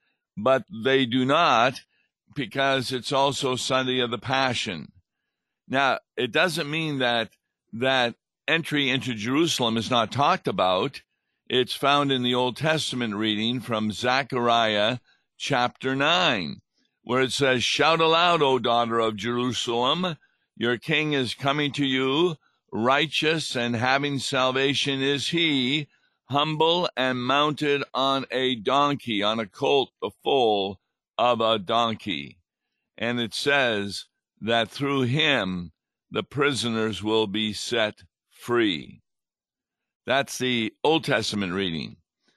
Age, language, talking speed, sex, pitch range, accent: 60-79, English, 125 wpm, male, 115-140 Hz, American